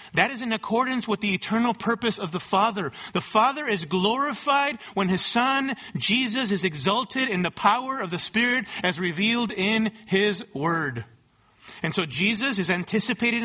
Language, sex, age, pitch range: English, male, 40-59, 190-250 Hz